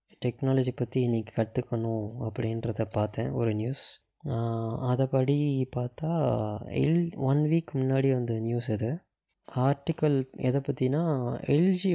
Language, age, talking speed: Tamil, 20-39, 105 wpm